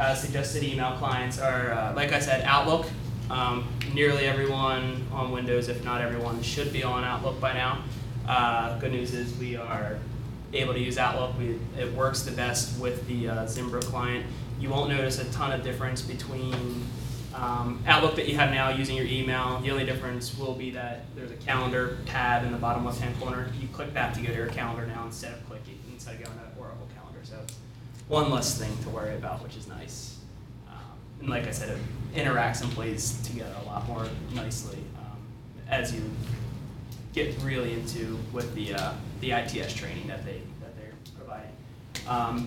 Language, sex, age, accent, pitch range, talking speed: English, male, 20-39, American, 115-130 Hz, 190 wpm